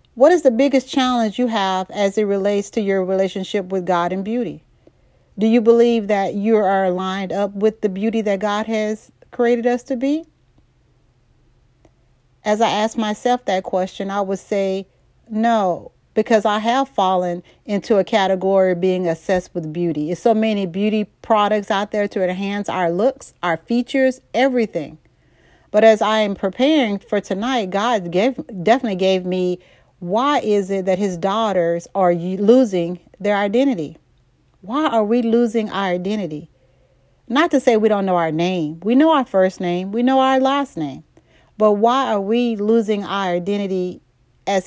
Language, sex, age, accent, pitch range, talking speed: English, female, 40-59, American, 185-235 Hz, 170 wpm